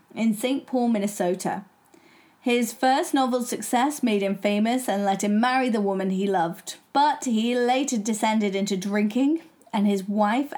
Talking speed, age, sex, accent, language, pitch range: 160 wpm, 20-39, female, British, English, 200-245 Hz